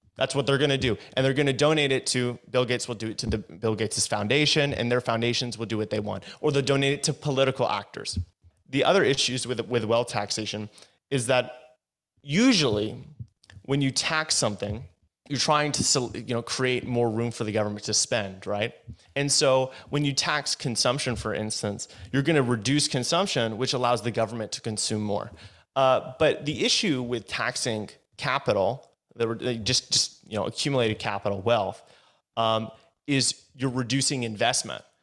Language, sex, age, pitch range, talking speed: English, male, 30-49, 110-140 Hz, 175 wpm